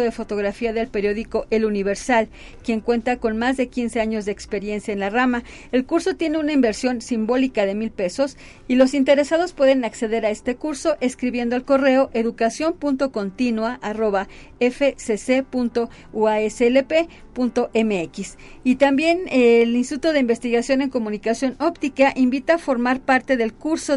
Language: Spanish